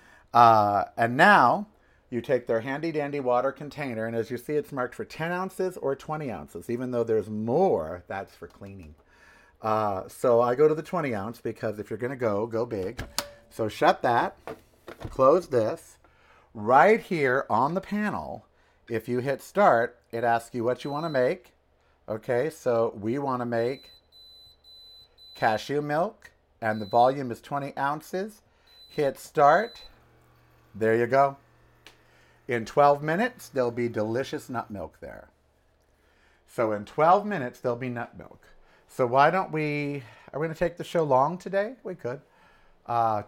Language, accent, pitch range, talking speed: English, American, 110-155 Hz, 160 wpm